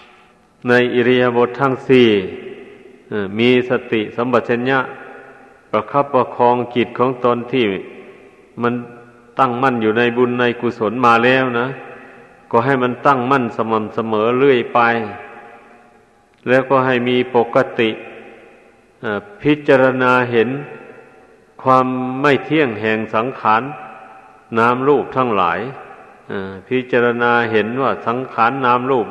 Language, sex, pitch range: Thai, male, 115-130 Hz